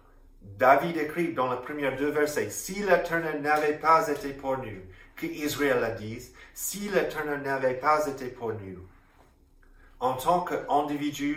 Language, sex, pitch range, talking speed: French, male, 100-150 Hz, 145 wpm